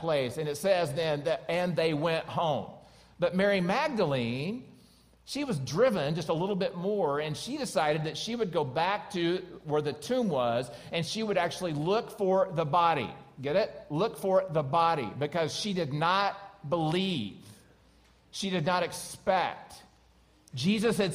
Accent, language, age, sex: American, English, 50-69, male